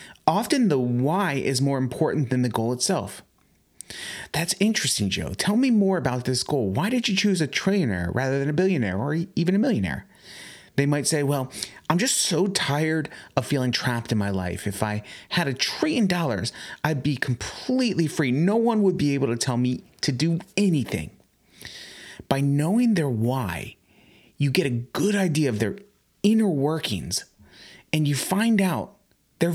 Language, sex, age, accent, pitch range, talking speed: English, male, 30-49, American, 125-190 Hz, 175 wpm